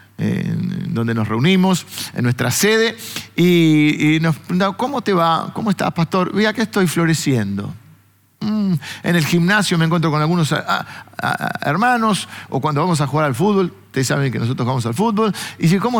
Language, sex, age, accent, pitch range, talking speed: Spanish, male, 50-69, Argentinian, 140-195 Hz, 170 wpm